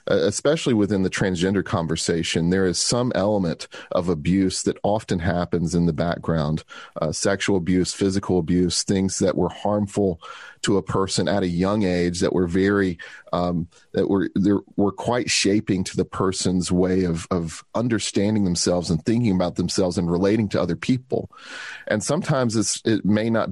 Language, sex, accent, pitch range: English, male, American, 90-105 Hz